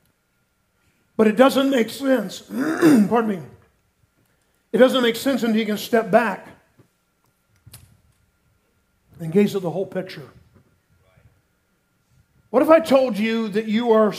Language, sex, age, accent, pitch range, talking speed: English, male, 50-69, American, 175-235 Hz, 125 wpm